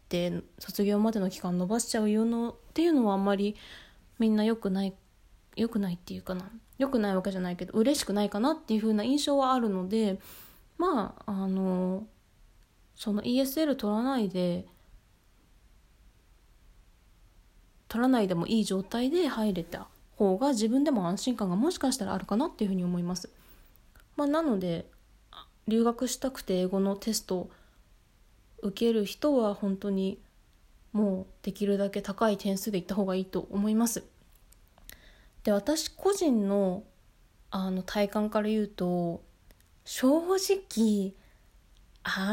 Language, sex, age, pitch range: Japanese, female, 20-39, 185-240 Hz